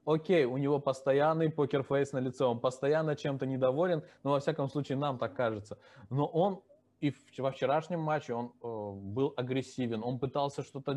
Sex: male